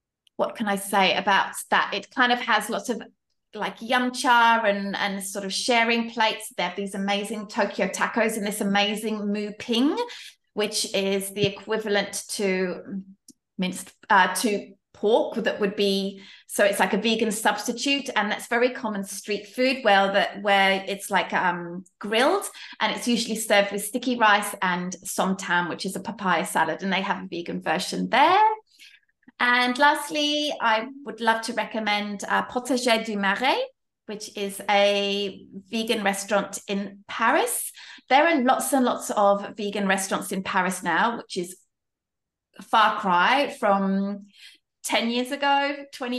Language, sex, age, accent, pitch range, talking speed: English, female, 20-39, British, 195-235 Hz, 160 wpm